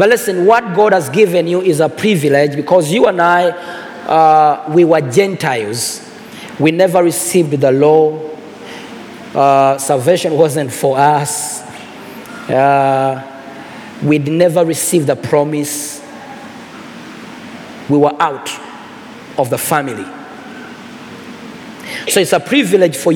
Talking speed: 115 wpm